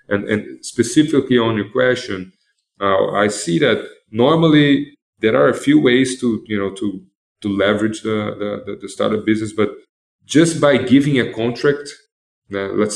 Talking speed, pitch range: 160 wpm, 100-115 Hz